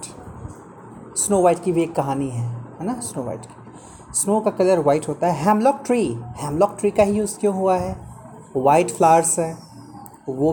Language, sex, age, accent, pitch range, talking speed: Hindi, male, 30-49, native, 140-215 Hz, 180 wpm